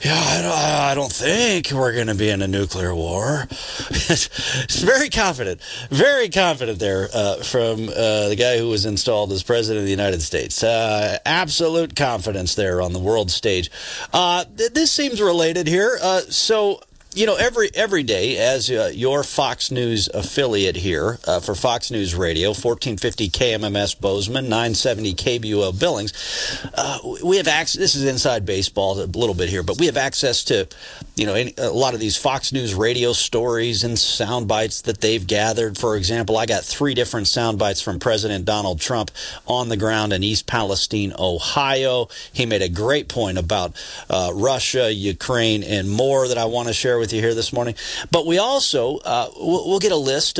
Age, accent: 40-59, American